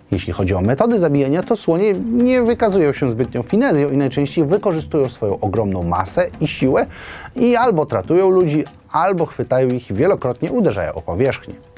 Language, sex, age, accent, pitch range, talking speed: Polish, male, 30-49, native, 105-155 Hz, 165 wpm